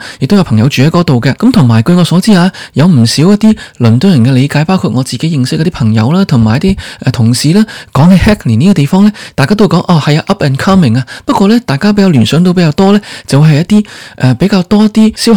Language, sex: Chinese, male